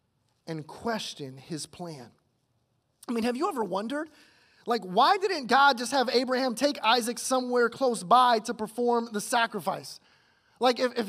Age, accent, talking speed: 30-49, American, 155 wpm